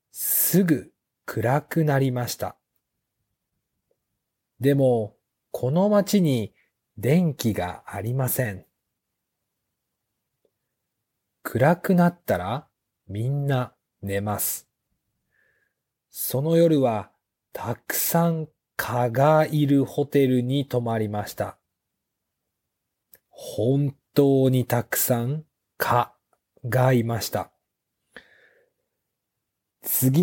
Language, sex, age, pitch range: Japanese, male, 40-59, 120-160 Hz